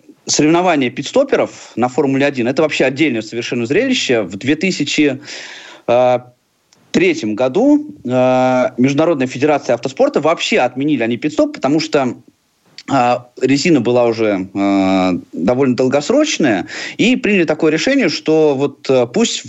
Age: 30-49